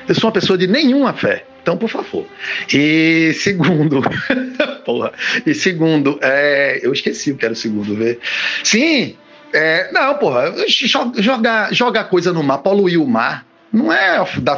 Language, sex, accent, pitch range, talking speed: Portuguese, male, Brazilian, 160-260 Hz, 165 wpm